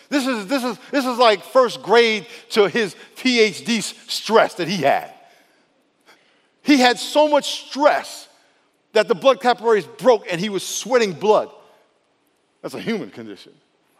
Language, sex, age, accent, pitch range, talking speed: English, male, 50-69, American, 200-245 Hz, 150 wpm